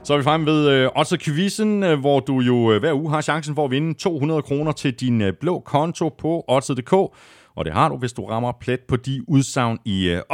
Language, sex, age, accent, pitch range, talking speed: Danish, male, 30-49, native, 100-145 Hz, 225 wpm